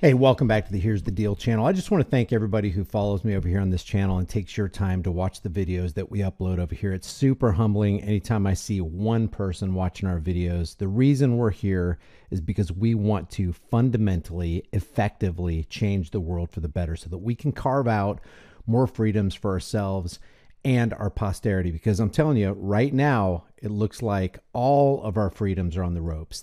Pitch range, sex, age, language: 95-120 Hz, male, 40-59, English